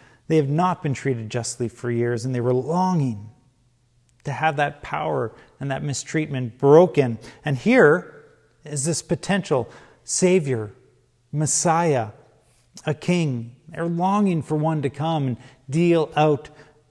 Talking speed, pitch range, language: 135 wpm, 120-155 Hz, English